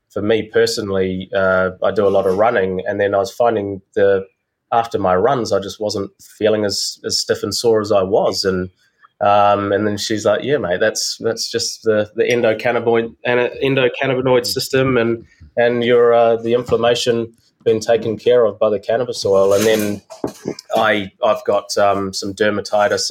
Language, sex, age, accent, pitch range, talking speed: English, male, 20-39, Australian, 95-115 Hz, 180 wpm